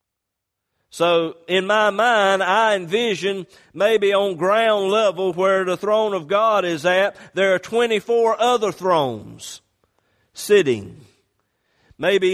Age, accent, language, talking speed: 50-69, American, English, 115 wpm